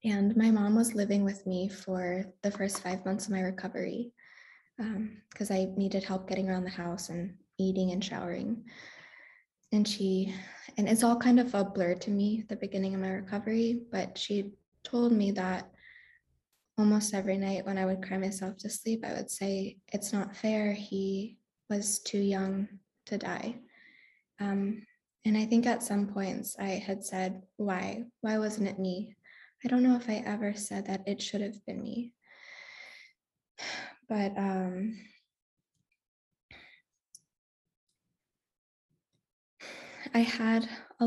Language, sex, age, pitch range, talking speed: English, female, 10-29, 195-225 Hz, 155 wpm